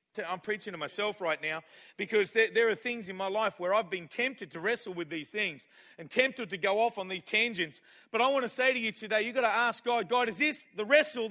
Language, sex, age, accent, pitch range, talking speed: English, male, 40-59, Australian, 215-265 Hz, 255 wpm